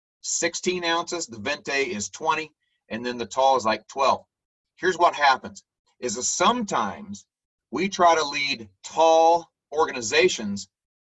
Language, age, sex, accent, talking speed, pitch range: English, 40-59, male, American, 135 wpm, 110-165 Hz